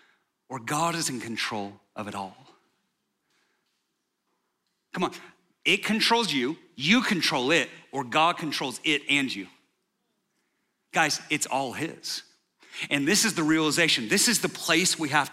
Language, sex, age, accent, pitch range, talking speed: English, male, 40-59, American, 165-245 Hz, 145 wpm